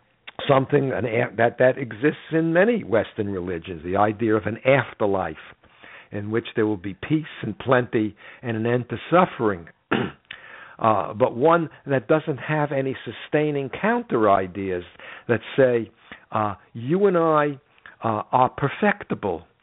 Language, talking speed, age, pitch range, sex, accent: English, 140 wpm, 60-79, 110-145 Hz, male, American